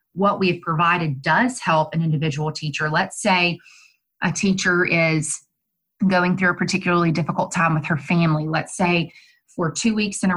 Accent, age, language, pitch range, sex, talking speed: American, 30-49, English, 160-200 Hz, female, 170 wpm